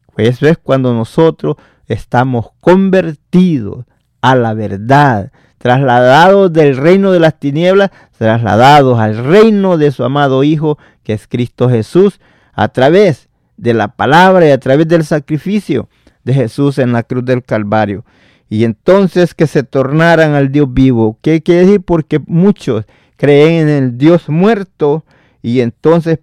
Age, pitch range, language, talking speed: 40-59, 125-165 Hz, Spanish, 145 wpm